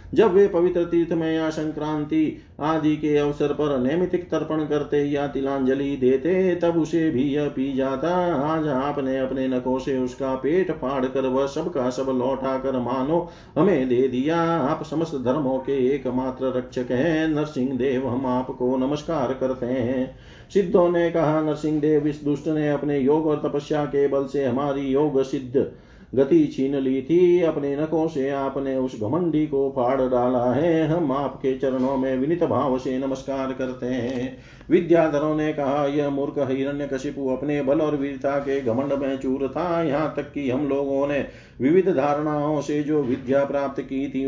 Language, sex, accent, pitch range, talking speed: Hindi, male, native, 130-155 Hz, 170 wpm